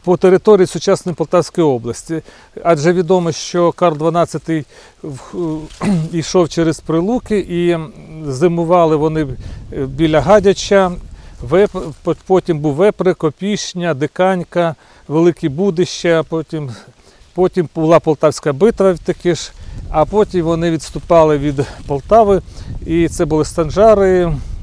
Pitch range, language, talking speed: 150-180 Hz, Ukrainian, 95 wpm